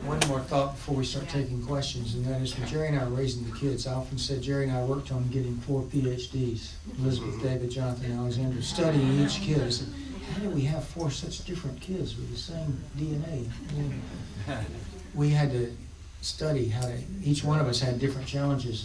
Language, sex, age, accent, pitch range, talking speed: English, male, 60-79, American, 120-145 Hz, 205 wpm